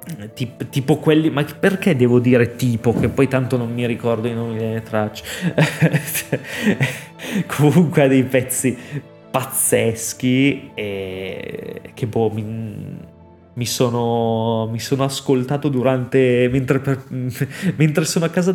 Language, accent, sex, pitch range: Italian, native, male, 115-145 Hz